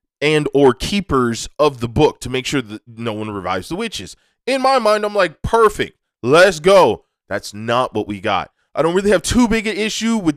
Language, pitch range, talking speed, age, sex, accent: English, 105-155 Hz, 215 wpm, 20-39, male, American